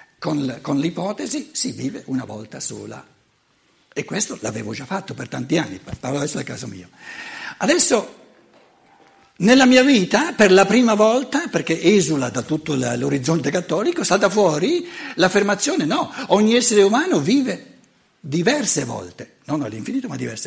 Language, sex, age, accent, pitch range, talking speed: Italian, male, 60-79, native, 140-215 Hz, 140 wpm